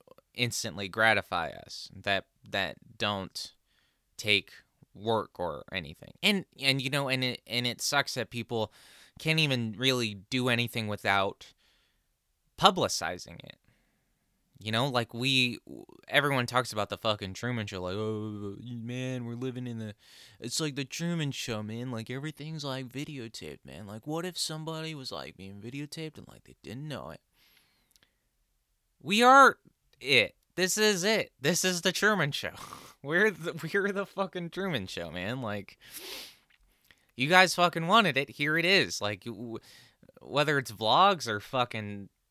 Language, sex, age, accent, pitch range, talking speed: English, male, 20-39, American, 110-170 Hz, 150 wpm